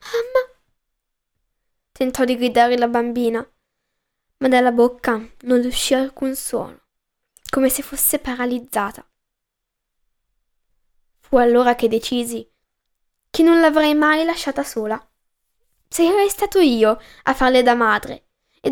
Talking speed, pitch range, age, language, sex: 110 wpm, 240-305 Hz, 10-29, Italian, female